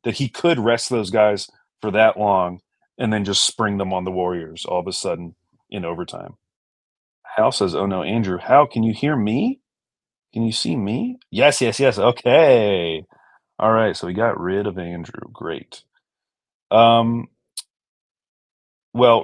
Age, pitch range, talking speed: 30-49, 95-125 Hz, 160 wpm